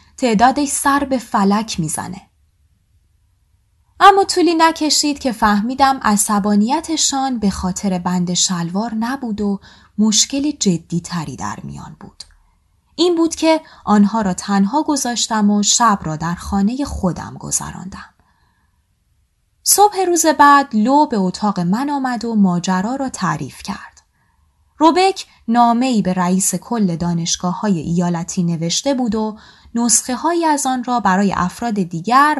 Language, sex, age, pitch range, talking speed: Persian, female, 20-39, 185-270 Hz, 125 wpm